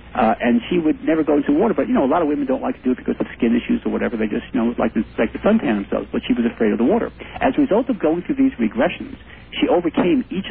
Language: English